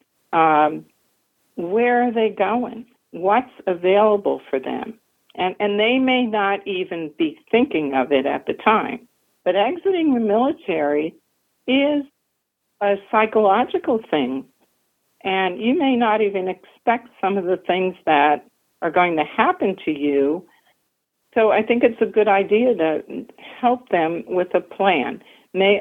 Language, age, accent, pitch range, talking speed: English, 50-69, American, 170-230 Hz, 140 wpm